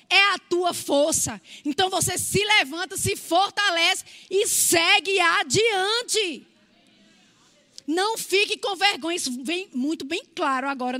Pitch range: 320-390 Hz